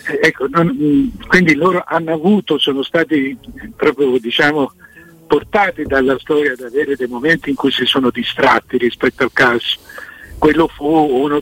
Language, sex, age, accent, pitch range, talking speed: Italian, male, 60-79, native, 125-155 Hz, 145 wpm